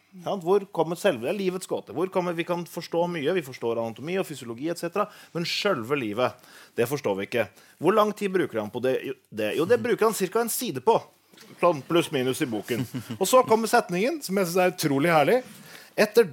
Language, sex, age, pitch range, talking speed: English, male, 30-49, 155-210 Hz, 210 wpm